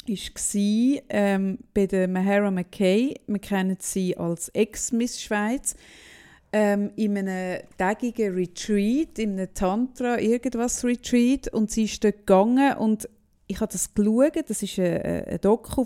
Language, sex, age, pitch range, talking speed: German, female, 30-49, 195-235 Hz, 130 wpm